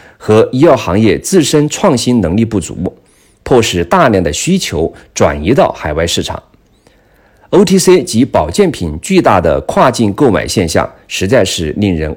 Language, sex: Chinese, male